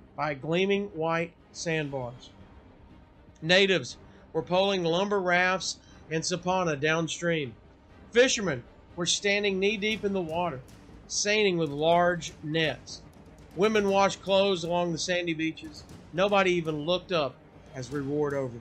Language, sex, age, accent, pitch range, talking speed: English, male, 50-69, American, 145-180 Hz, 125 wpm